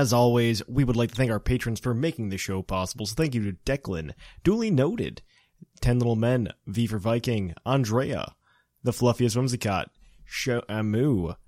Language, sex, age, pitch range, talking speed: English, male, 20-39, 105-140 Hz, 170 wpm